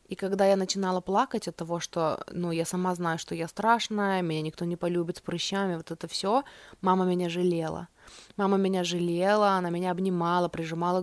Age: 20-39